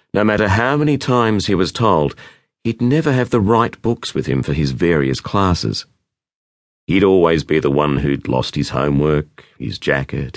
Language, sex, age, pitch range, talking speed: English, male, 40-59, 70-105 Hz, 180 wpm